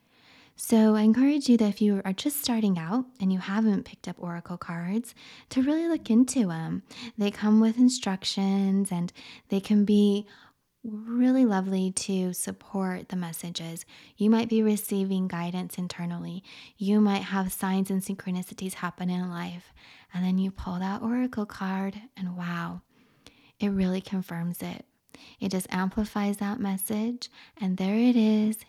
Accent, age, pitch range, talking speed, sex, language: American, 20-39, 185-230 Hz, 155 wpm, female, English